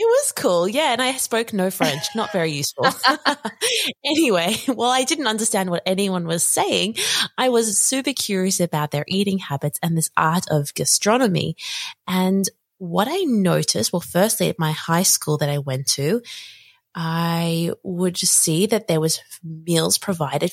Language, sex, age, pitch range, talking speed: English, female, 20-39, 160-225 Hz, 165 wpm